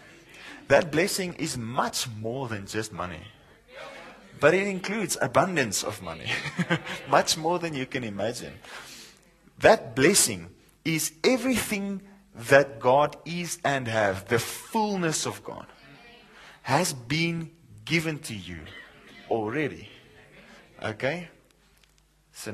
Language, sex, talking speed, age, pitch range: English, male, 110 wpm, 30-49, 115-165 Hz